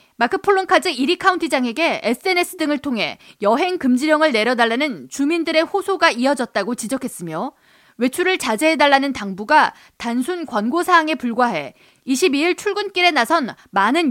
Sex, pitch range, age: female, 245-345 Hz, 20-39